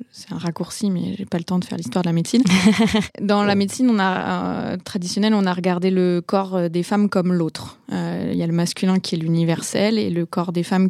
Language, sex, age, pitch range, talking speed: French, female, 20-39, 180-210 Hz, 235 wpm